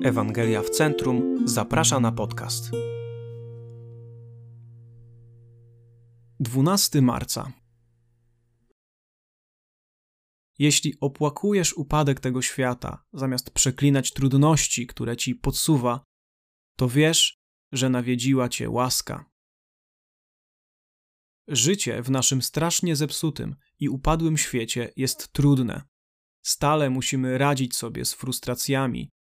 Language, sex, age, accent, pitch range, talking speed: Polish, male, 20-39, native, 120-145 Hz, 85 wpm